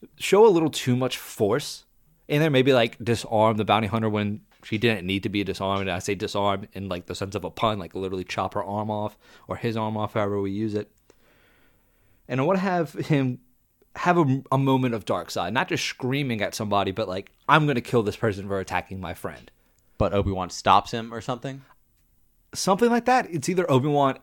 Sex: male